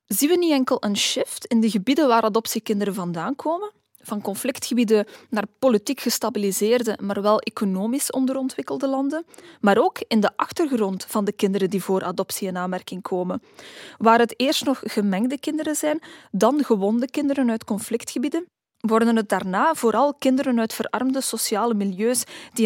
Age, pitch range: 20-39, 205-265 Hz